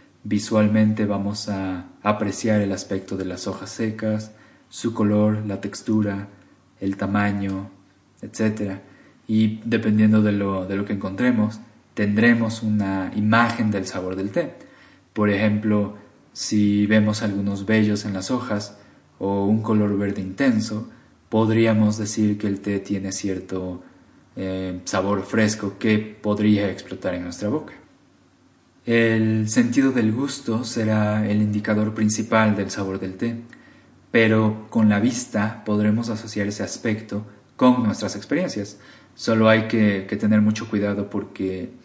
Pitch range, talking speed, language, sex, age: 100-110 Hz, 135 wpm, Spanish, male, 20-39